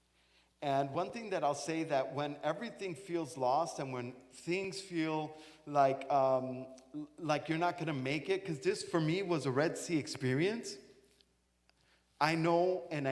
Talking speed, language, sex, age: 165 wpm, English, male, 40-59